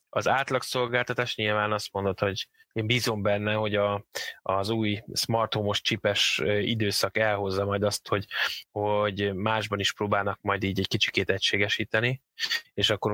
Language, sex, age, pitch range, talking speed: Hungarian, male, 10-29, 100-115 Hz, 145 wpm